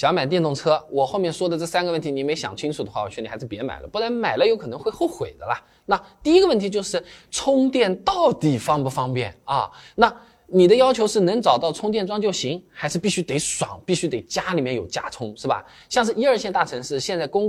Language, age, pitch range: Chinese, 20-39, 125-190 Hz